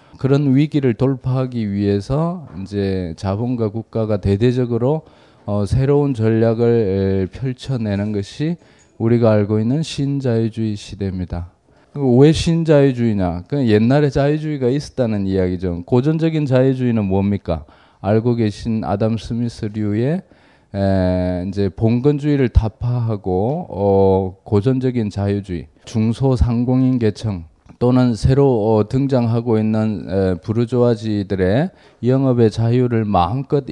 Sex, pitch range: male, 100-130 Hz